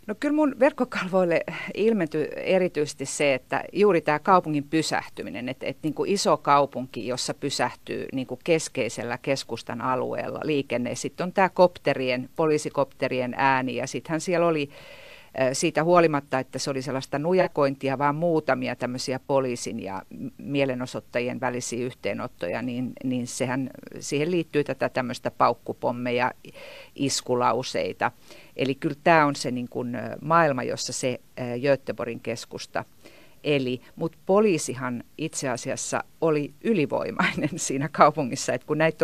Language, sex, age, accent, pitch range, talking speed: Finnish, female, 50-69, native, 125-160 Hz, 120 wpm